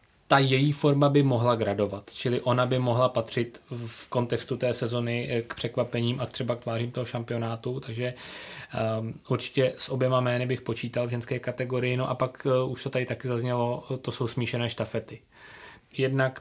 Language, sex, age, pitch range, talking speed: Czech, male, 20-39, 115-125 Hz, 170 wpm